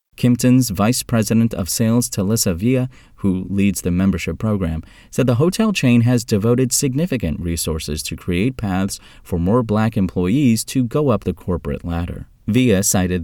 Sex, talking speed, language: male, 160 wpm, English